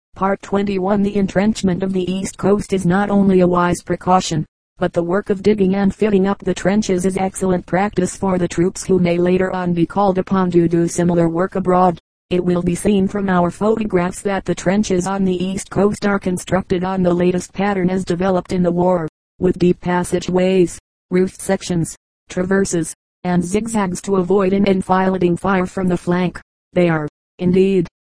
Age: 40-59